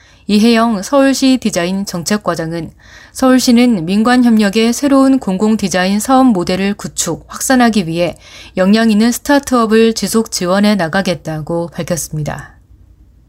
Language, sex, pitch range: Korean, female, 180-235 Hz